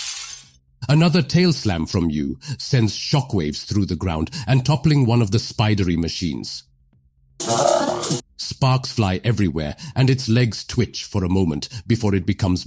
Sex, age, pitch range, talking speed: male, 50-69, 90-135 Hz, 135 wpm